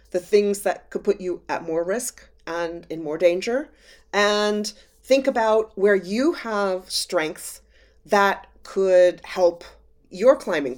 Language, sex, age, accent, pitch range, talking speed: English, female, 30-49, American, 175-220 Hz, 140 wpm